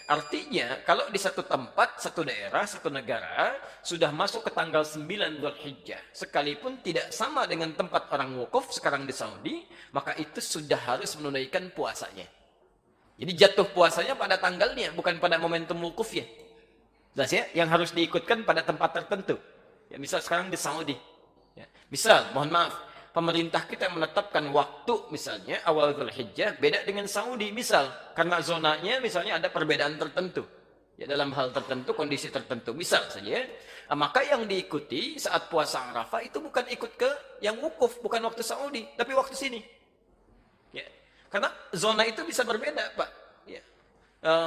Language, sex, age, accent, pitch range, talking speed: Indonesian, male, 30-49, native, 165-255 Hz, 145 wpm